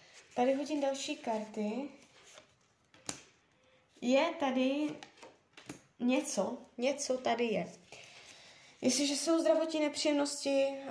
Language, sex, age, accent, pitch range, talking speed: Czech, female, 20-39, native, 230-285 Hz, 75 wpm